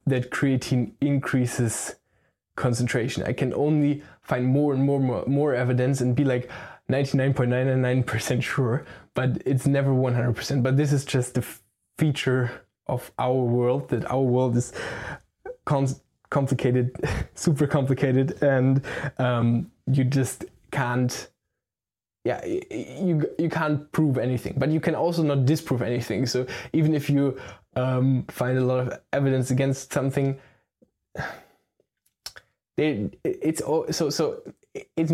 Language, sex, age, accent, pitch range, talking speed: English, male, 10-29, German, 125-140 Hz, 140 wpm